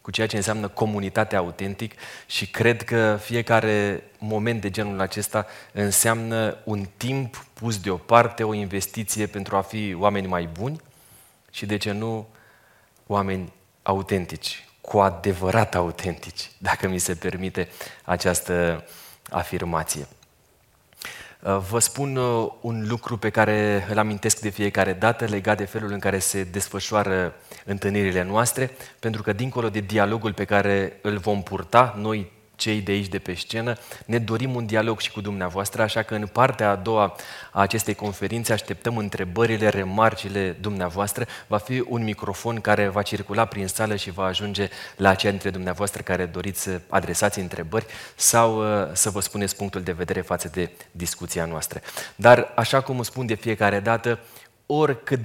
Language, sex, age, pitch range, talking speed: Romanian, male, 30-49, 95-110 Hz, 150 wpm